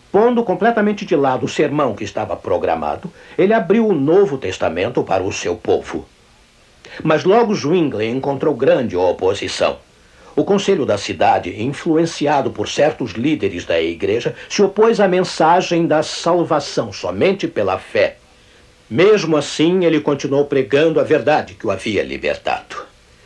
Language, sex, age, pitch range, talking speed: Portuguese, male, 60-79, 155-210 Hz, 140 wpm